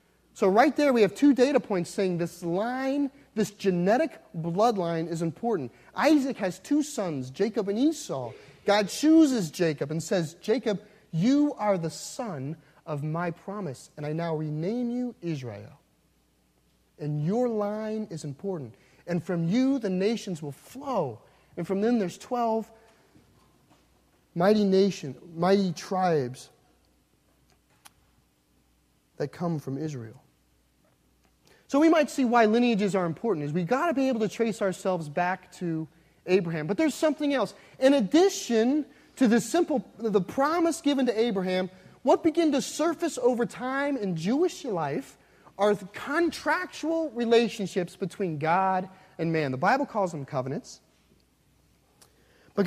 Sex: male